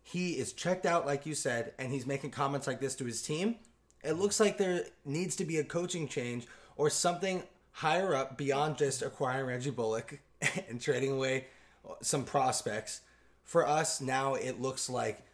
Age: 20-39